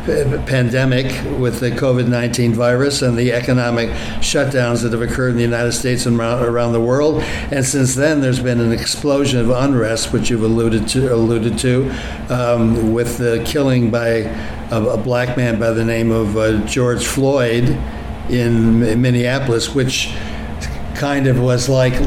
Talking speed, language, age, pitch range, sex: 160 wpm, English, 60-79, 120-135 Hz, male